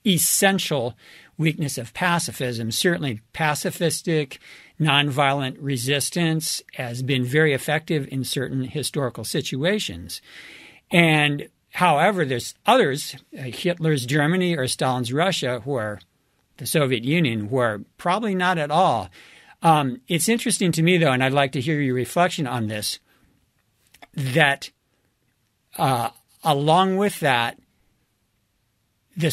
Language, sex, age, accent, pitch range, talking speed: English, male, 50-69, American, 125-165 Hz, 115 wpm